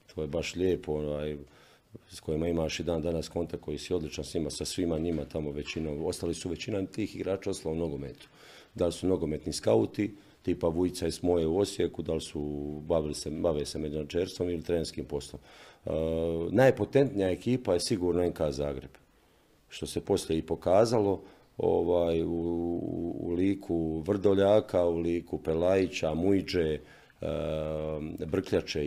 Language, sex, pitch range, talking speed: Croatian, male, 80-90 Hz, 150 wpm